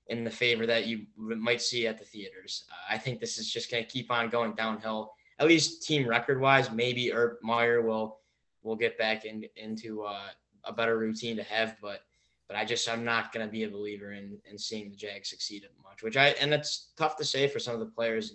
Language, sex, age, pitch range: English, male, 10-29, 105-120 Hz